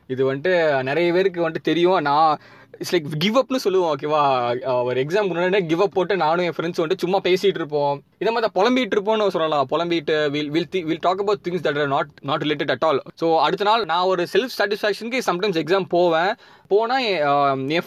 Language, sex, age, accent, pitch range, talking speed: Tamil, male, 20-39, native, 135-190 Hz, 190 wpm